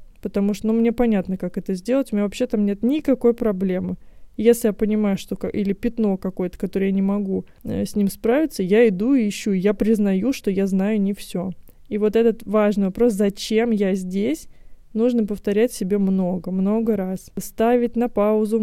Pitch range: 200-230 Hz